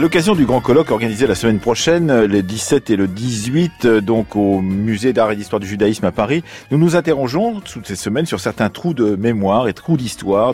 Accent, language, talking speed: French, French, 215 wpm